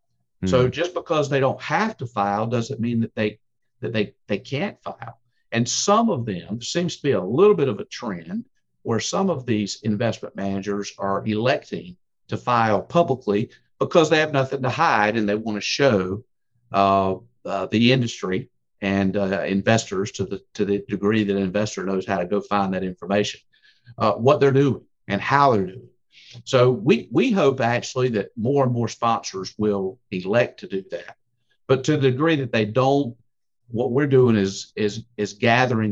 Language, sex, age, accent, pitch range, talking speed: English, male, 50-69, American, 100-125 Hz, 185 wpm